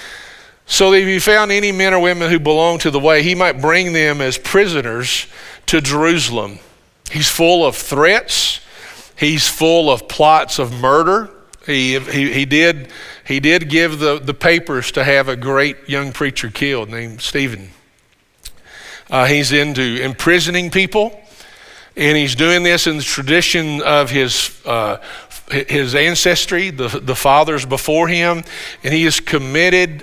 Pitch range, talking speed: 140-175 Hz, 150 wpm